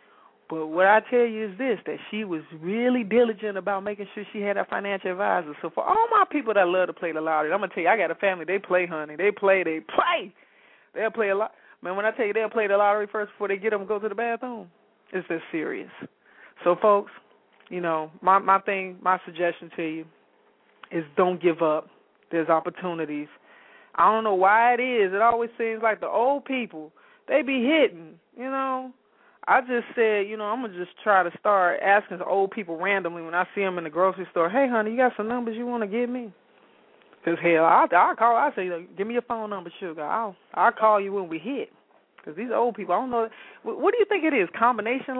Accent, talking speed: American, 240 wpm